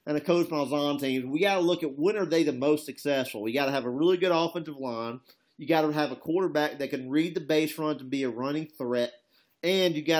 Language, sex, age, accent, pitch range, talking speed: English, male, 40-59, American, 125-150 Hz, 265 wpm